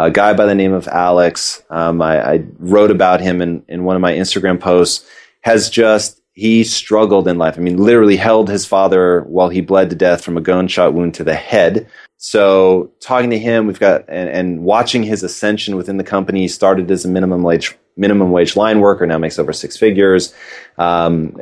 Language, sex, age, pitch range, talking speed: English, male, 30-49, 90-110 Hz, 205 wpm